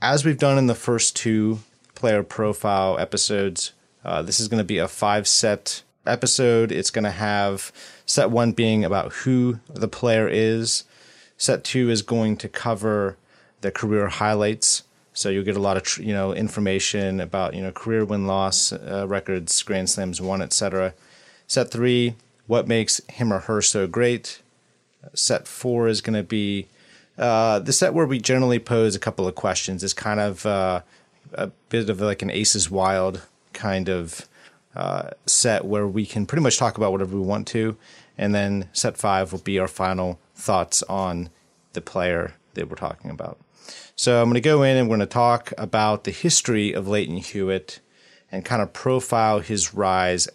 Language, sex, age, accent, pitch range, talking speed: English, male, 30-49, American, 95-115 Hz, 180 wpm